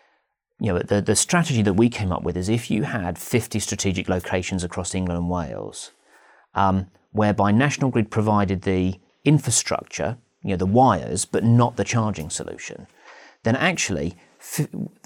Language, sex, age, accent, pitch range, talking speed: English, male, 40-59, British, 100-135 Hz, 155 wpm